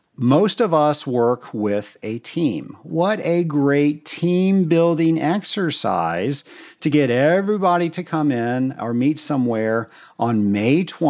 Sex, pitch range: male, 115-155 Hz